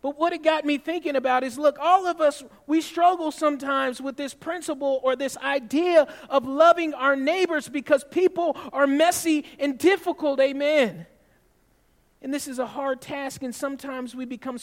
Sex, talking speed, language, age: male, 170 wpm, English, 40-59